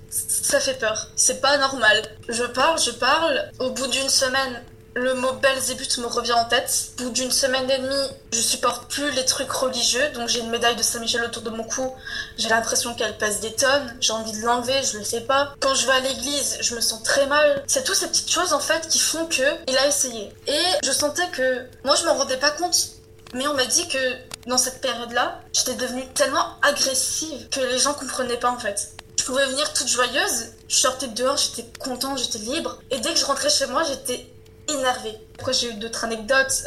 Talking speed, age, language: 225 wpm, 10-29, French